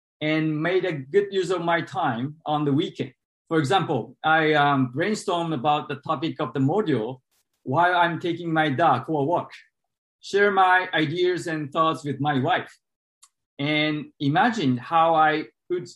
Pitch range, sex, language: 145-180 Hz, male, English